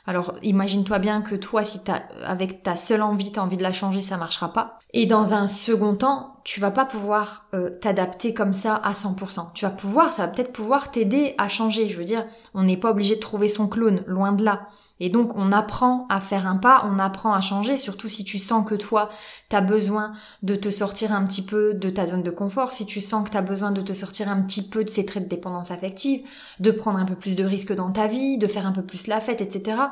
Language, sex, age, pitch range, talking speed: French, female, 20-39, 200-240 Hz, 260 wpm